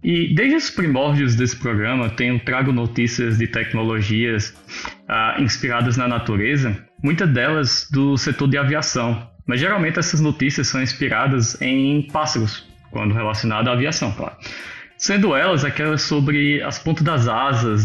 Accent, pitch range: Brazilian, 115-145 Hz